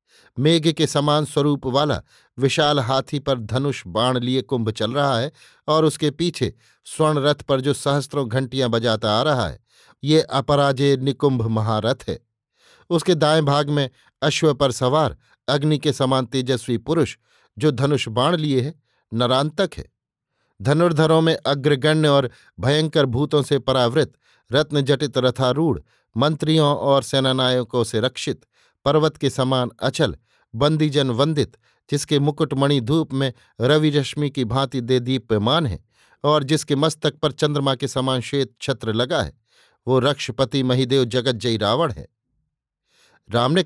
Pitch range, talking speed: 125-150 Hz, 140 wpm